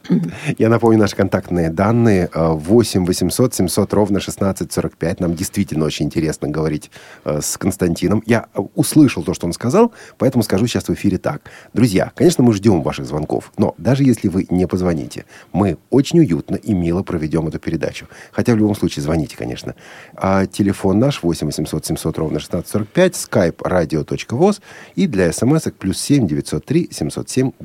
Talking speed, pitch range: 160 wpm, 90-125 Hz